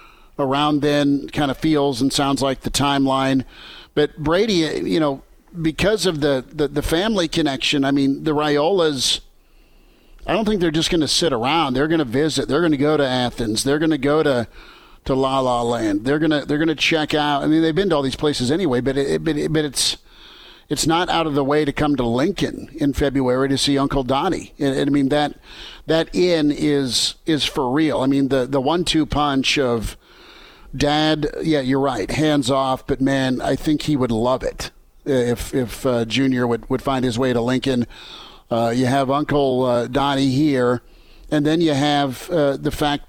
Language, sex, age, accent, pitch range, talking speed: English, male, 50-69, American, 130-150 Hz, 210 wpm